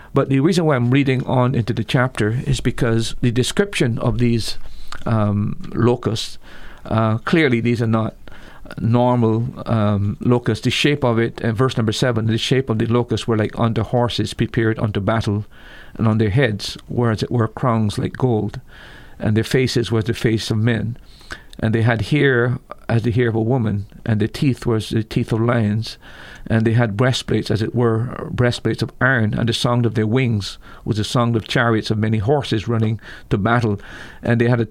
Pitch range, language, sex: 110-125 Hz, English, male